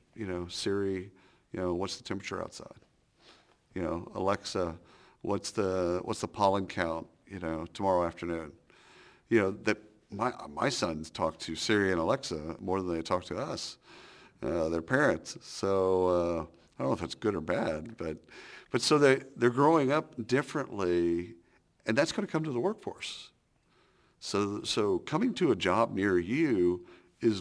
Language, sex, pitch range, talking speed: English, male, 90-120 Hz, 170 wpm